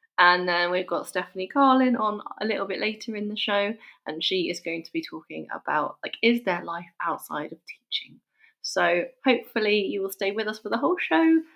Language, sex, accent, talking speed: English, female, British, 210 wpm